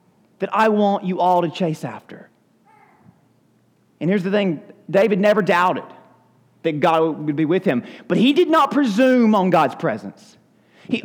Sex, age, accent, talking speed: male, 30-49, American, 165 wpm